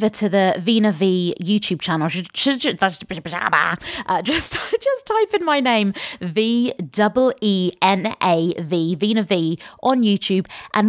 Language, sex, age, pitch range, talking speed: English, female, 20-39, 180-230 Hz, 130 wpm